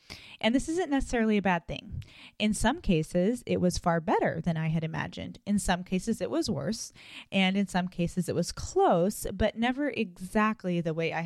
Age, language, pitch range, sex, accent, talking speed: 20-39, English, 170-225 Hz, female, American, 195 wpm